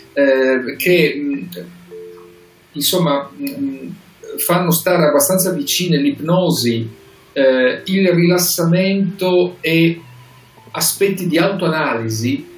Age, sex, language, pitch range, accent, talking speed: 40-59, male, Italian, 130-175 Hz, native, 65 wpm